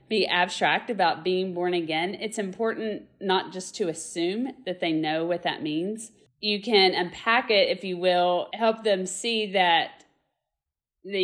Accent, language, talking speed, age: American, English, 160 wpm, 40-59